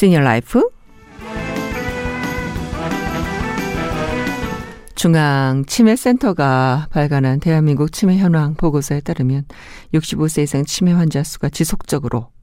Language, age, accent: Korean, 50-69, native